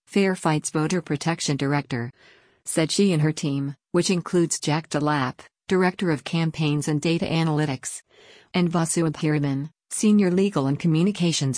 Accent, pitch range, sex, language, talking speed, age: American, 140-170 Hz, female, English, 140 wpm, 50-69